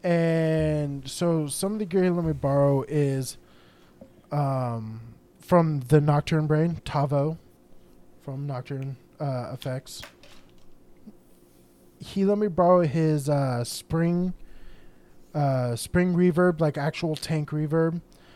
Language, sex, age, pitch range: English, male, 20-39, 130-170 Hz